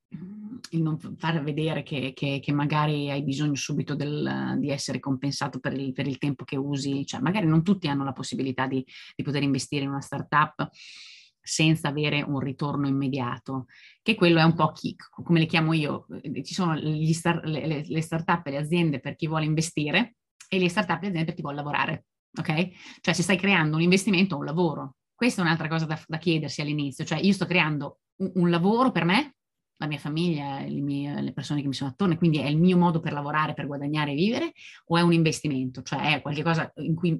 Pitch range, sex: 145-175 Hz, female